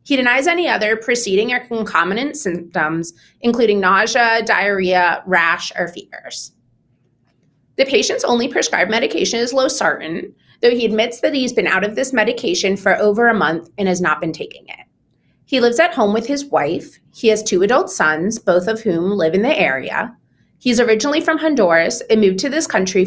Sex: female